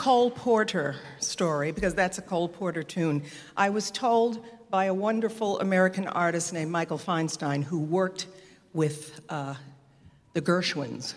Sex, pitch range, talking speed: female, 155-210 Hz, 140 wpm